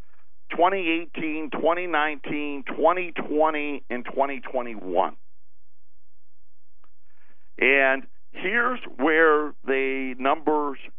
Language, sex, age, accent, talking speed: English, male, 50-69, American, 55 wpm